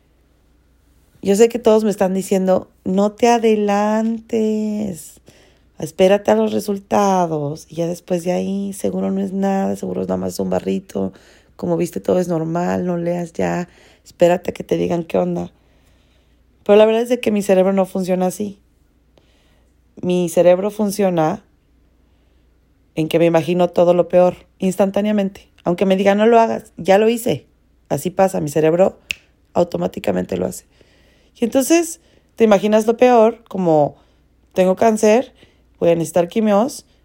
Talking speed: 155 wpm